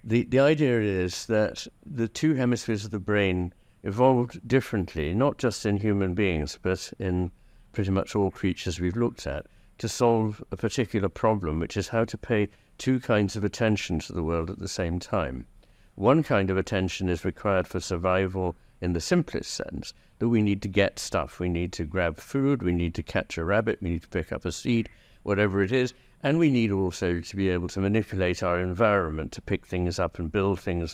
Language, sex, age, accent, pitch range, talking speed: English, male, 60-79, British, 90-110 Hz, 205 wpm